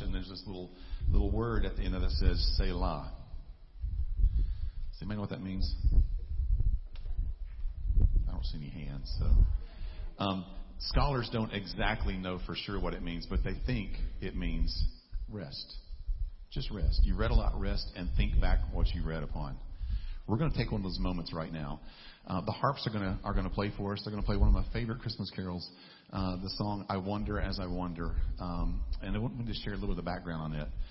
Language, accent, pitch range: English, American, 80-100 Hz